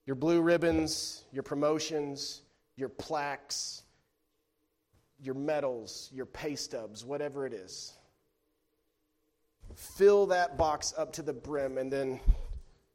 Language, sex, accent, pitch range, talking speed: English, male, American, 145-180 Hz, 110 wpm